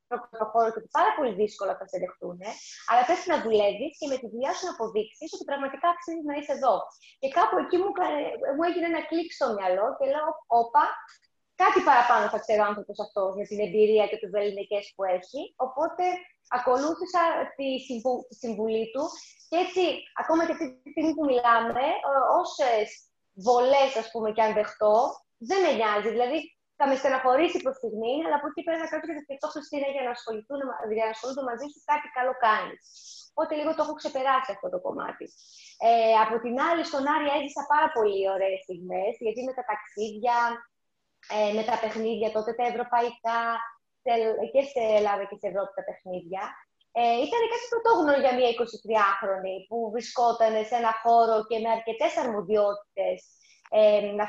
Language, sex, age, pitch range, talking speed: Greek, female, 20-39, 215-300 Hz, 170 wpm